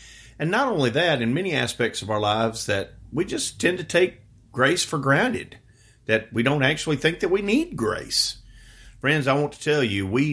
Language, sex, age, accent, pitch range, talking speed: English, male, 40-59, American, 105-140 Hz, 205 wpm